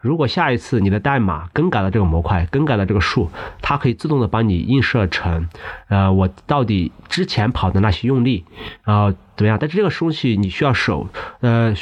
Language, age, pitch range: Chinese, 30-49, 100-125 Hz